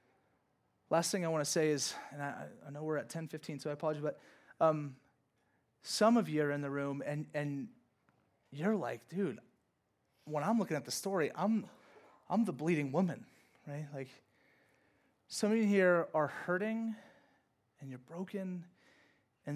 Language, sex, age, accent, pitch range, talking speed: English, male, 30-49, American, 140-185 Hz, 170 wpm